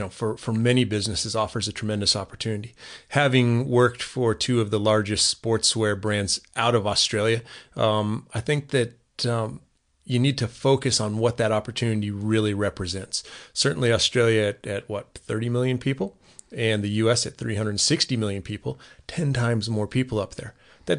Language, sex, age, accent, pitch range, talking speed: English, male, 40-59, American, 105-125 Hz, 170 wpm